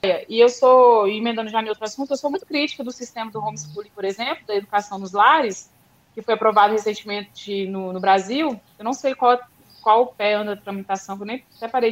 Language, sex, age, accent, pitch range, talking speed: Portuguese, female, 20-39, Brazilian, 205-275 Hz, 215 wpm